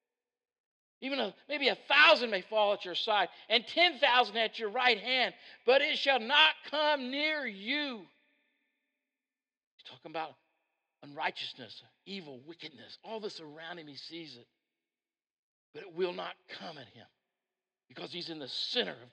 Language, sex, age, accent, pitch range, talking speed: English, male, 50-69, American, 125-210 Hz, 150 wpm